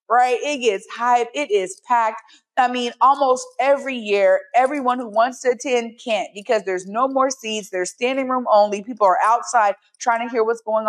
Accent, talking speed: American, 195 wpm